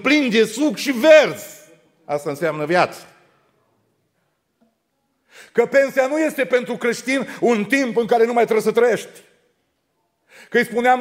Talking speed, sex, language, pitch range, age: 140 wpm, male, Romanian, 230-270 Hz, 40-59